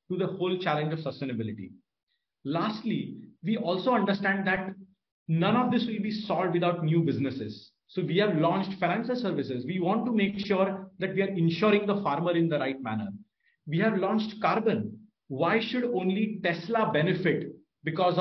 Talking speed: 170 wpm